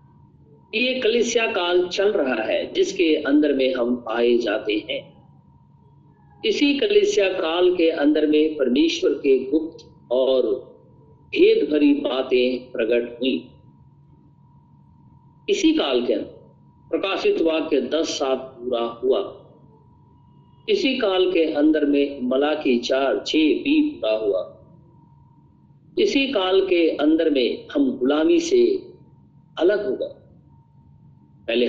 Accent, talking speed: native, 115 wpm